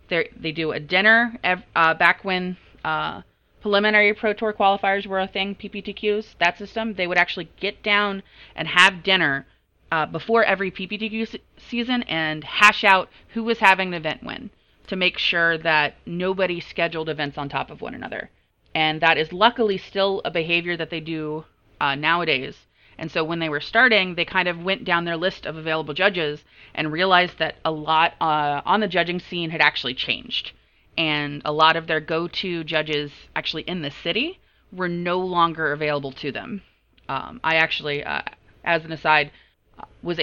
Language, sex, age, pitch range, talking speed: English, female, 30-49, 155-195 Hz, 175 wpm